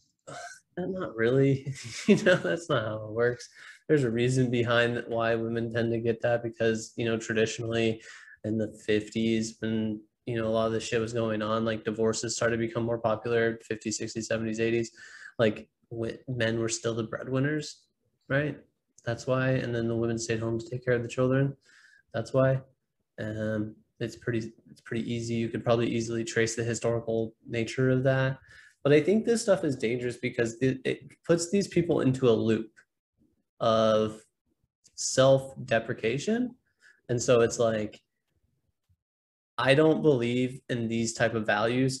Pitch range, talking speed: 115-130 Hz, 170 wpm